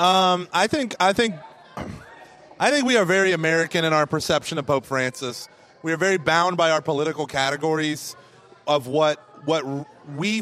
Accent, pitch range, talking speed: American, 140-175 Hz, 165 wpm